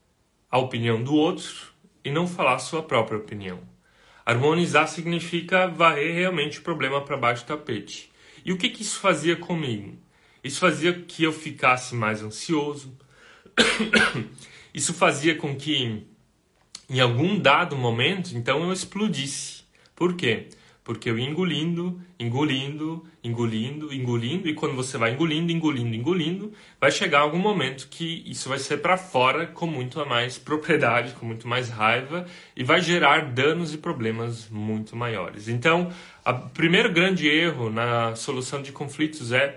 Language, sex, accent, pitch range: Portuguese, male, Brazilian, 125-170 Hz